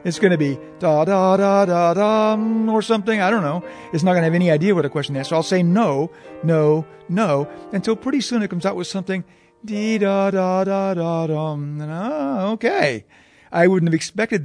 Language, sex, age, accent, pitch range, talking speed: English, male, 50-69, American, 140-180 Hz, 185 wpm